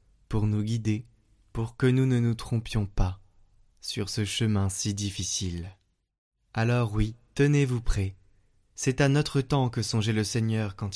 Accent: French